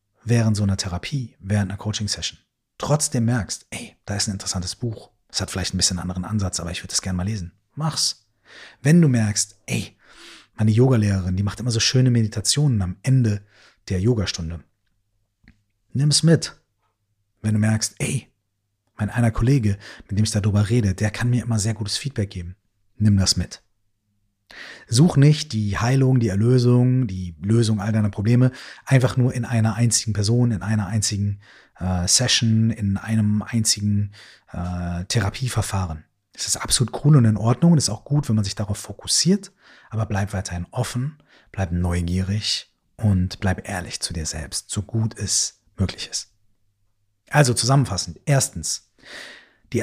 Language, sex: German, male